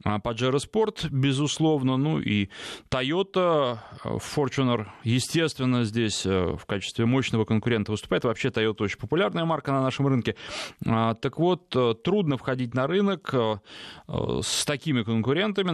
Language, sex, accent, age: Russian, male, native, 20-39